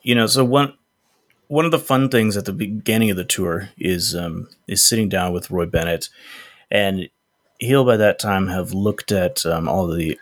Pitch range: 90-110 Hz